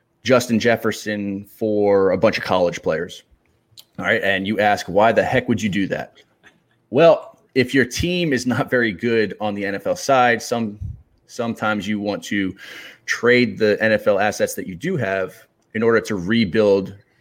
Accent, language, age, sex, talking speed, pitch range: American, English, 30-49, male, 170 wpm, 95-110 Hz